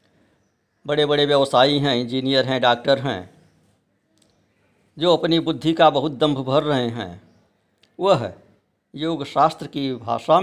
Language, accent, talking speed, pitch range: Hindi, native, 130 wpm, 125-180 Hz